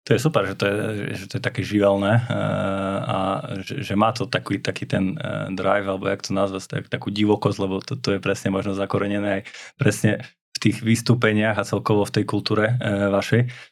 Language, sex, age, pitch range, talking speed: Slovak, male, 20-39, 100-110 Hz, 195 wpm